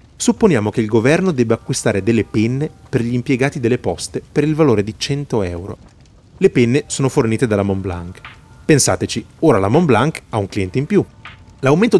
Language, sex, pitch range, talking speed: Italian, male, 105-155 Hz, 175 wpm